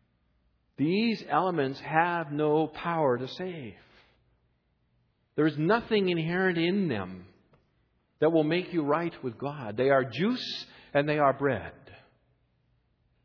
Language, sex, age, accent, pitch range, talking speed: English, male, 50-69, American, 115-180 Hz, 120 wpm